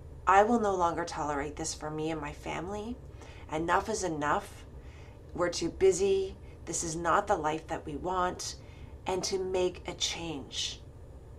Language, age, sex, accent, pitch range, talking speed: English, 30-49, female, American, 155-195 Hz, 160 wpm